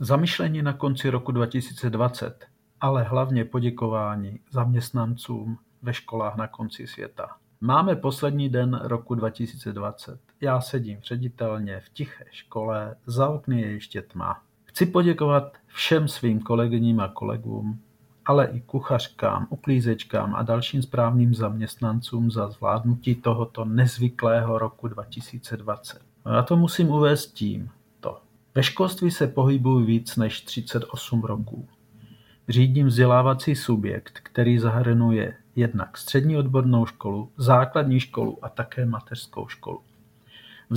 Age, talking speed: 50-69, 120 wpm